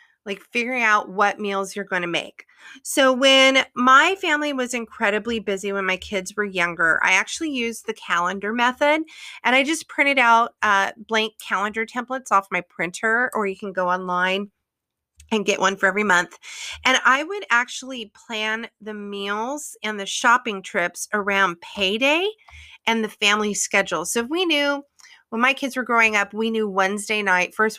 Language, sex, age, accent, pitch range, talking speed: English, female, 30-49, American, 195-255 Hz, 175 wpm